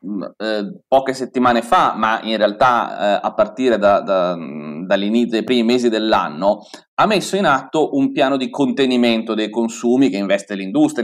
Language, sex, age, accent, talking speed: Italian, male, 30-49, native, 160 wpm